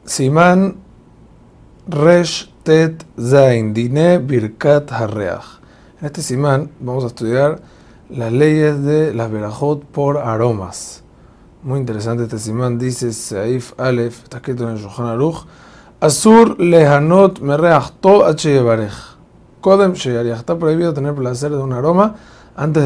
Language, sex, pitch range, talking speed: Spanish, male, 115-150 Hz, 100 wpm